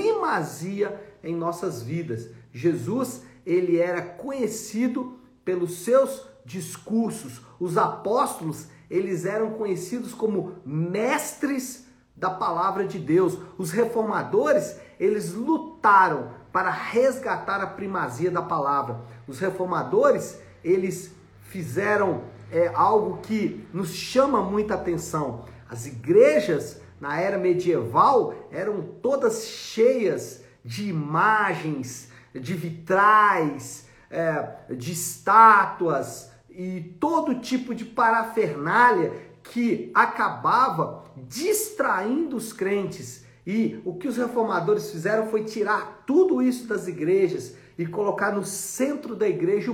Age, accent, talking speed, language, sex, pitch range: 50-69, Brazilian, 100 wpm, Portuguese, male, 170-235 Hz